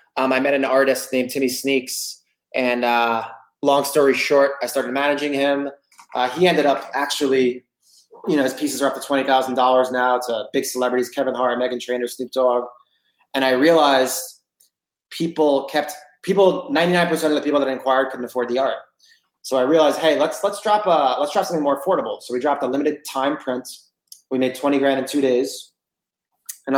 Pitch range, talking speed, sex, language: 125-140 Hz, 185 wpm, male, English